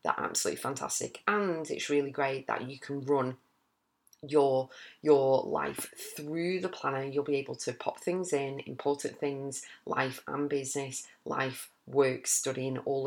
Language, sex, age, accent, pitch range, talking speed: English, female, 30-49, British, 135-170 Hz, 145 wpm